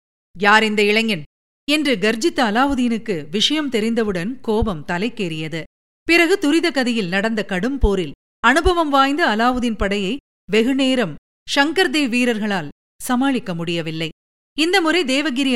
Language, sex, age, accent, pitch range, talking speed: Tamil, female, 50-69, native, 205-285 Hz, 105 wpm